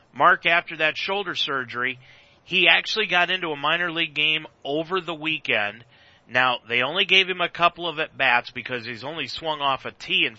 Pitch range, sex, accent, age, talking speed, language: 125-165 Hz, male, American, 40-59, 190 wpm, English